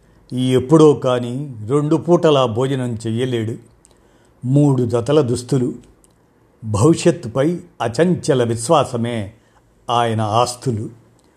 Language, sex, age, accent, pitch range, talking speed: Telugu, male, 50-69, native, 120-155 Hz, 80 wpm